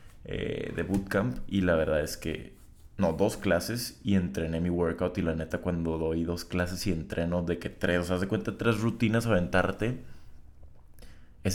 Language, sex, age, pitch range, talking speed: Spanish, male, 20-39, 85-95 Hz, 180 wpm